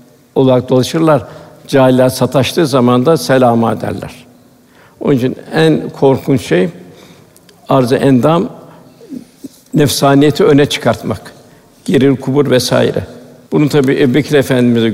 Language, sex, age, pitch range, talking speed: Turkish, male, 60-79, 125-150 Hz, 110 wpm